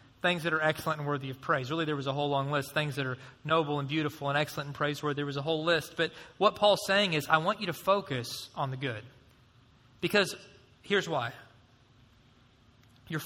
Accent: American